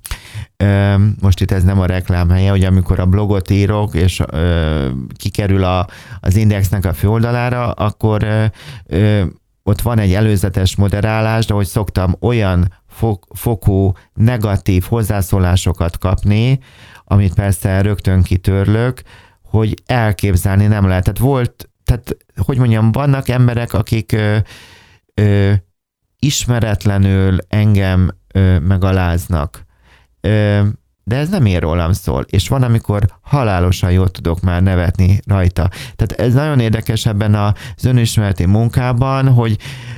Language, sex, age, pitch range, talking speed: Hungarian, male, 30-49, 95-110 Hz, 125 wpm